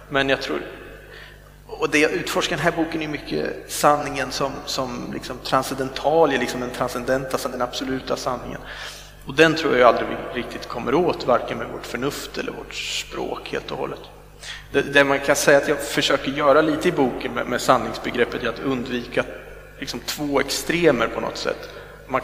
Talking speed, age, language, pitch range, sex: 180 wpm, 30-49, Swedish, 130-150 Hz, male